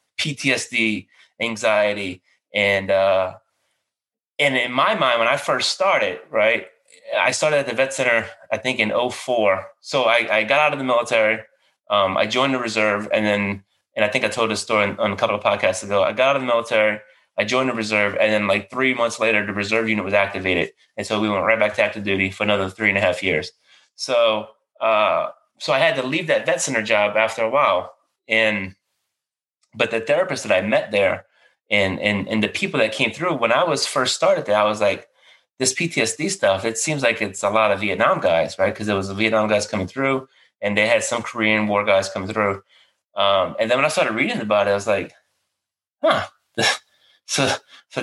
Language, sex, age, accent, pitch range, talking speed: English, male, 20-39, American, 105-135 Hz, 215 wpm